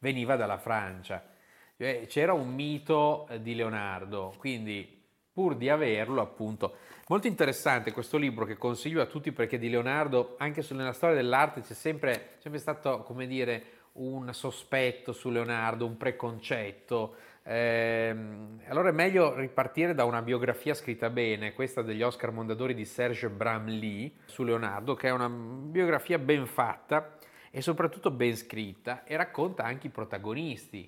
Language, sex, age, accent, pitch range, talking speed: Italian, male, 30-49, native, 115-150 Hz, 145 wpm